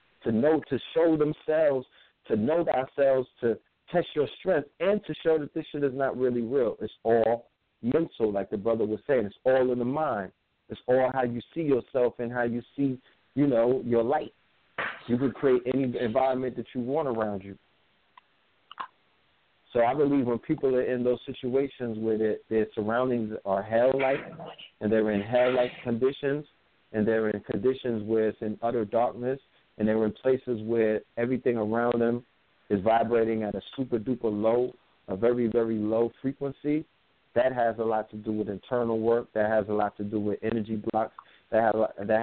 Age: 50-69